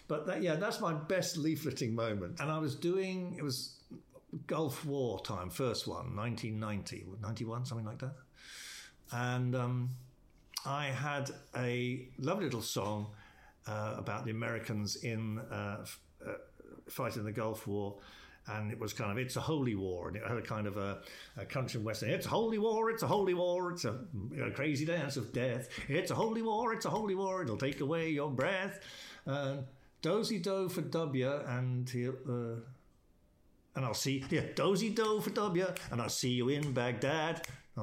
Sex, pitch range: male, 120-175 Hz